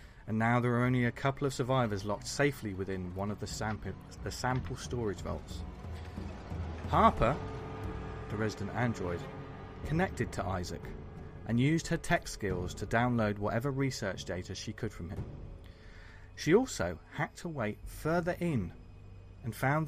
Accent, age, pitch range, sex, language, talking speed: British, 30-49, 95-135 Hz, male, English, 150 wpm